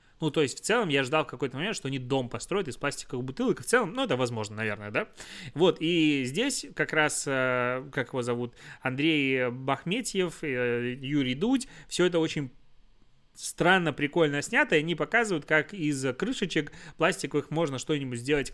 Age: 20-39